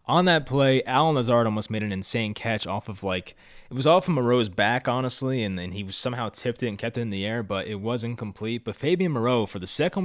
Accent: American